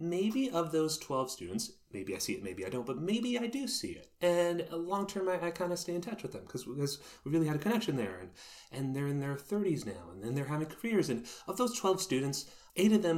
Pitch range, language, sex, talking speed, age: 115-185 Hz, English, male, 255 wpm, 30-49